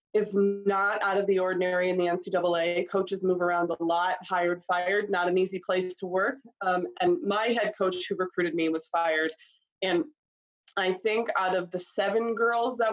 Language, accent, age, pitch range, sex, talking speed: English, American, 20-39, 180-210 Hz, female, 190 wpm